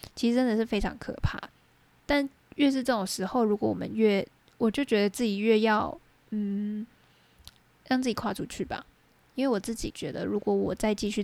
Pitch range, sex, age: 195-245 Hz, female, 10-29